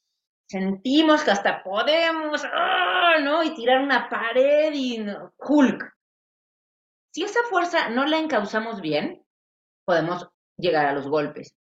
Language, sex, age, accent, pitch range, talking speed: English, female, 30-49, Mexican, 160-255 Hz, 130 wpm